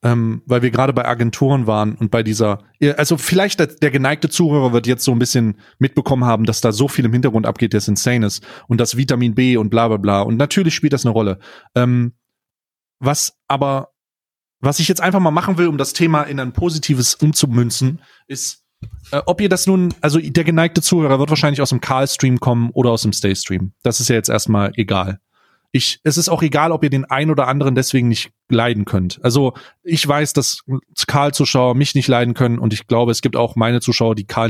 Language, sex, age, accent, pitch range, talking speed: German, male, 30-49, German, 120-155 Hz, 215 wpm